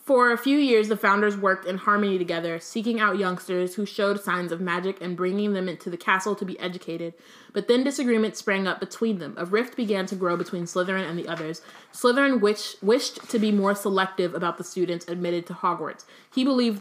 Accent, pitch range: American, 180-215 Hz